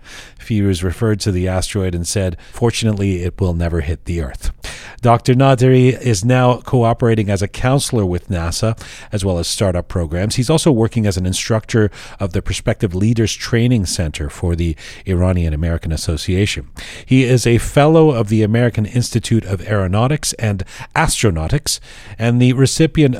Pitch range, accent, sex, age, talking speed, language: 90-120 Hz, American, male, 40-59, 160 wpm, English